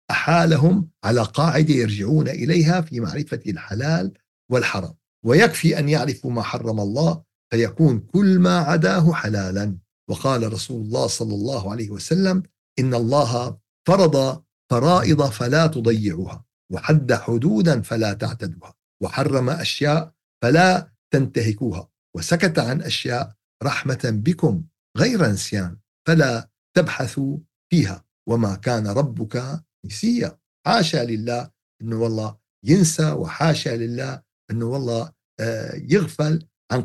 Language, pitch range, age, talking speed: Arabic, 115-155 Hz, 50-69, 105 wpm